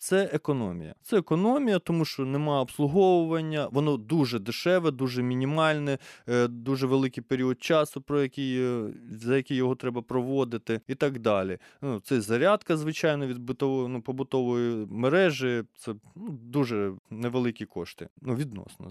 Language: Ukrainian